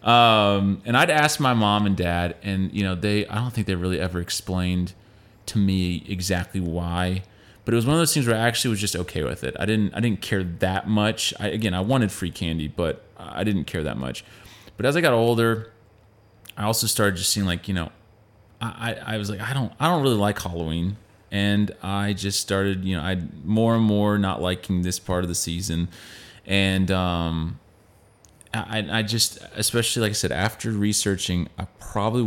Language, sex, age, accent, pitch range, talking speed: English, male, 30-49, American, 90-110 Hz, 210 wpm